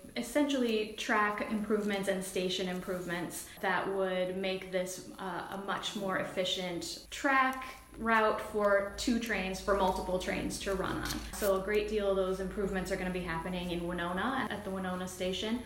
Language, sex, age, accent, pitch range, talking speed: English, female, 10-29, American, 185-215 Hz, 170 wpm